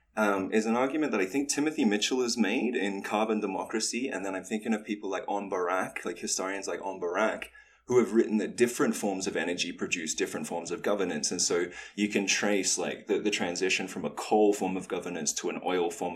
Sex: male